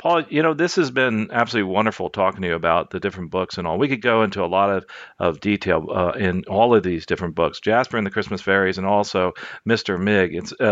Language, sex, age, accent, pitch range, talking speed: English, male, 40-59, American, 100-125 Hz, 245 wpm